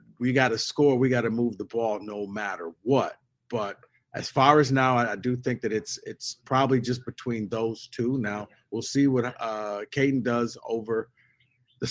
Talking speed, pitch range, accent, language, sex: 190 wpm, 115-135 Hz, American, English, male